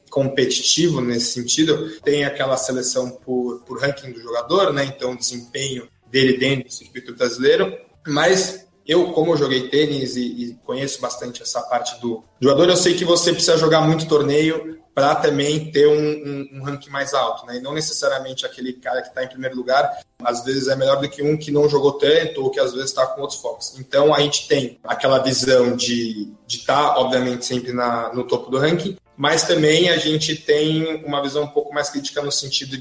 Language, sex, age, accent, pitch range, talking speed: Portuguese, male, 20-39, Brazilian, 125-150 Hz, 205 wpm